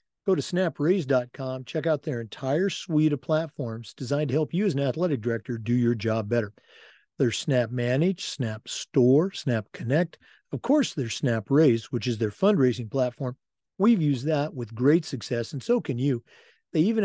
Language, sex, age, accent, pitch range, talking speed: English, male, 50-69, American, 120-155 Hz, 175 wpm